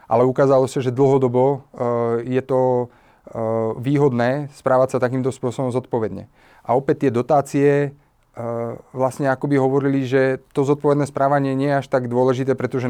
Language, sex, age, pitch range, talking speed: Slovak, male, 30-49, 115-135 Hz, 145 wpm